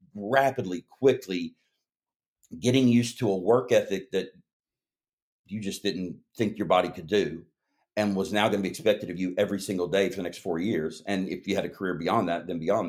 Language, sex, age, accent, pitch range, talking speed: English, male, 50-69, American, 95-110 Hz, 205 wpm